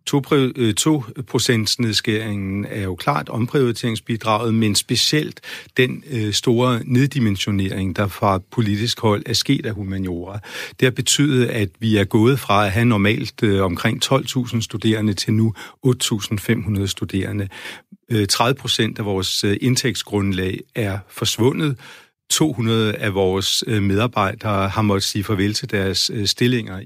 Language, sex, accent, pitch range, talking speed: Danish, male, native, 100-125 Hz, 120 wpm